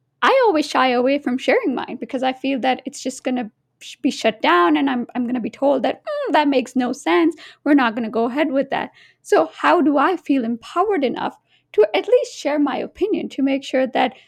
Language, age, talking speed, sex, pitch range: English, 20-39, 230 wpm, female, 260-330 Hz